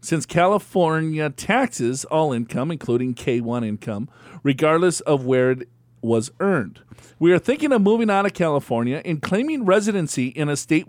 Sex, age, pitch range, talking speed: male, 40-59, 125-185 Hz, 155 wpm